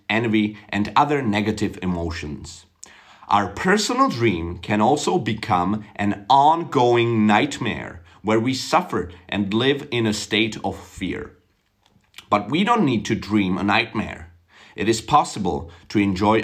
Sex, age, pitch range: male, 40-59, 95-135 Hz